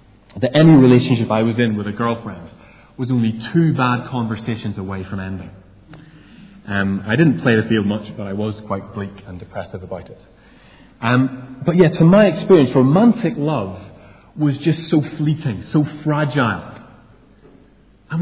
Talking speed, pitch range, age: 160 wpm, 110-155 Hz, 30-49